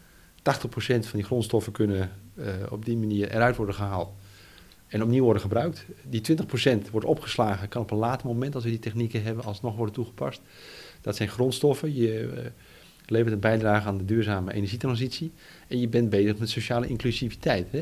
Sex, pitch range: male, 100-125 Hz